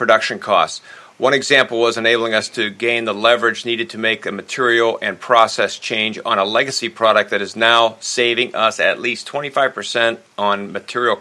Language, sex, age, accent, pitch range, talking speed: English, male, 50-69, American, 105-125 Hz, 175 wpm